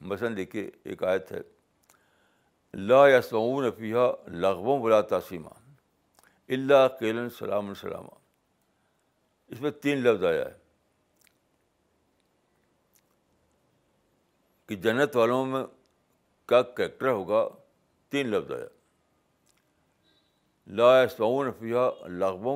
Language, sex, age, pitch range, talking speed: Urdu, male, 60-79, 100-140 Hz, 90 wpm